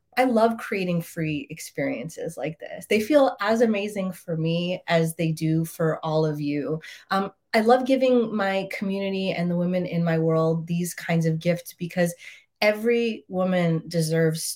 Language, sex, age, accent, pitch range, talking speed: English, female, 30-49, American, 165-210 Hz, 165 wpm